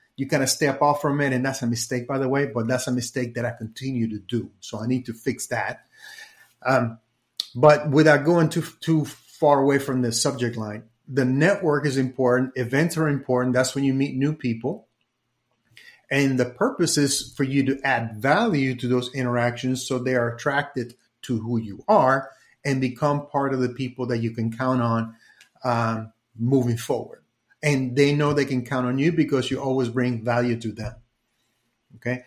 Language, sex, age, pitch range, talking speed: English, male, 30-49, 120-145 Hz, 195 wpm